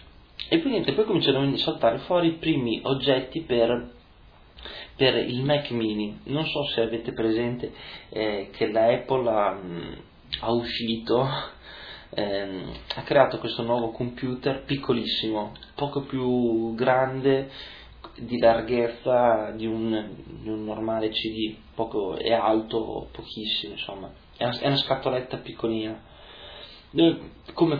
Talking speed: 125 wpm